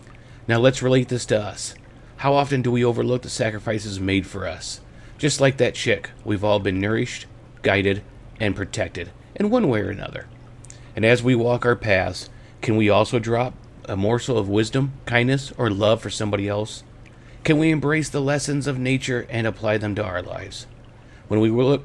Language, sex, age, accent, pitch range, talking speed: English, male, 40-59, American, 105-125 Hz, 185 wpm